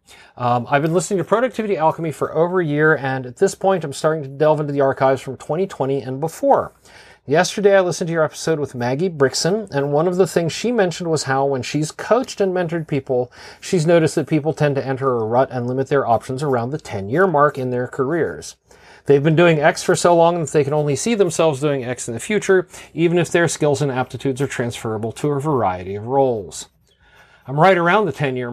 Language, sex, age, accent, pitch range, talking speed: English, male, 40-59, American, 130-165 Hz, 225 wpm